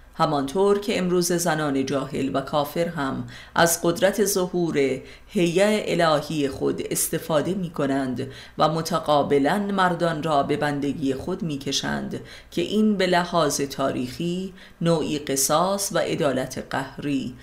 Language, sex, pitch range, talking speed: Persian, female, 135-175 Hz, 125 wpm